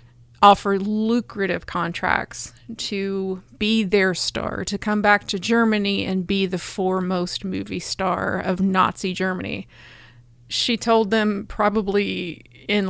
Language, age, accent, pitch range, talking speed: English, 30-49, American, 190-215 Hz, 120 wpm